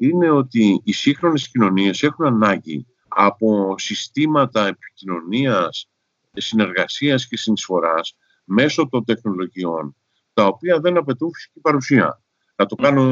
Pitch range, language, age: 105-150 Hz, Greek, 50-69